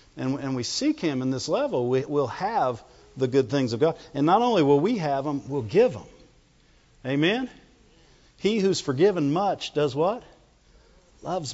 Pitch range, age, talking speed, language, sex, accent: 130-180 Hz, 50-69, 175 wpm, English, male, American